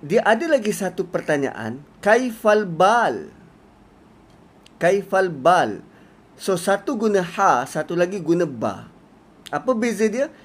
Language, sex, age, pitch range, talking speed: Malay, male, 30-49, 145-205 Hz, 115 wpm